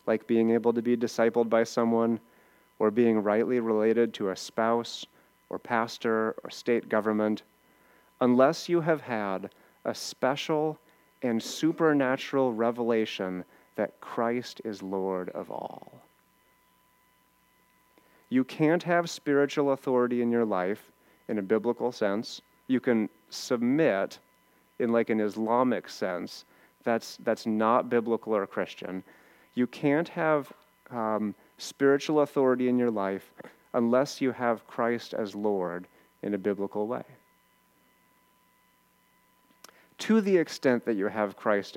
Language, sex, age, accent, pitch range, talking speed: English, male, 30-49, American, 110-135 Hz, 125 wpm